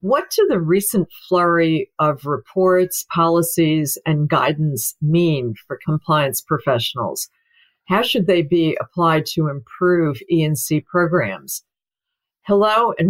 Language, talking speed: English, 115 wpm